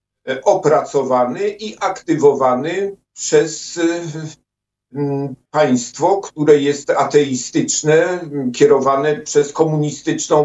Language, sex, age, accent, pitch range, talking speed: Polish, male, 50-69, native, 135-165 Hz, 65 wpm